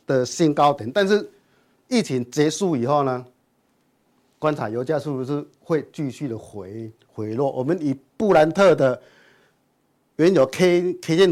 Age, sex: 50-69, male